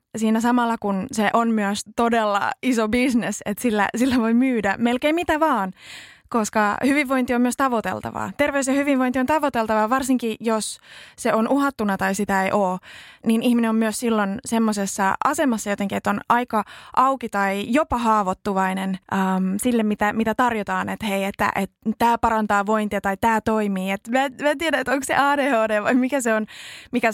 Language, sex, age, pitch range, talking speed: Finnish, female, 20-39, 200-255 Hz, 175 wpm